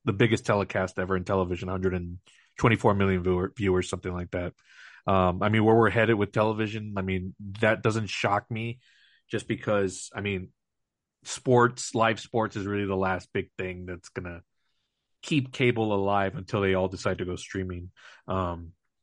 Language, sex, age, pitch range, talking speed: English, male, 30-49, 100-125 Hz, 165 wpm